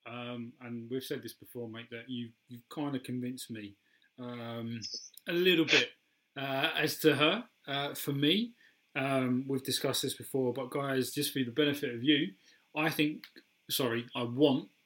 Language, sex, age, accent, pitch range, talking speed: English, male, 30-49, British, 125-145 Hz, 180 wpm